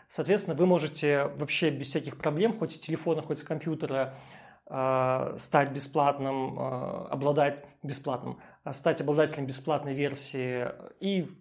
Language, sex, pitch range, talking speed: Russian, male, 140-165 Hz, 125 wpm